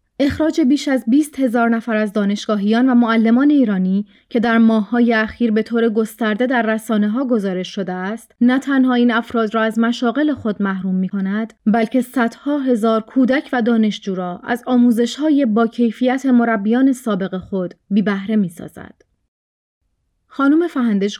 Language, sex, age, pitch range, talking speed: Persian, female, 30-49, 210-255 Hz, 155 wpm